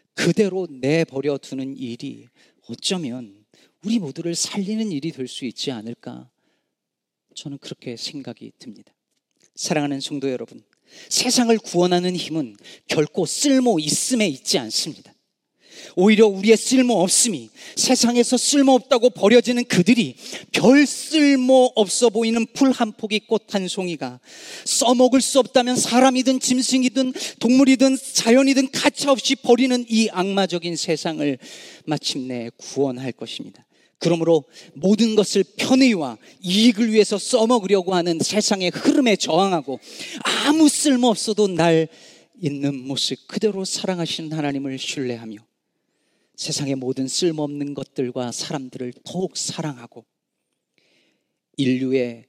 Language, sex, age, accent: Korean, male, 40-59, native